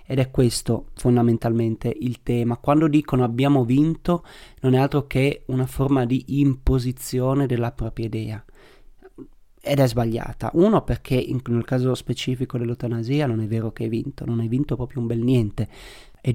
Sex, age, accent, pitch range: male, 30-49, native, 115-130 Hz